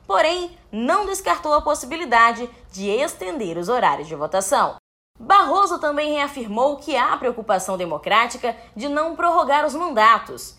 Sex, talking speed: female, 130 wpm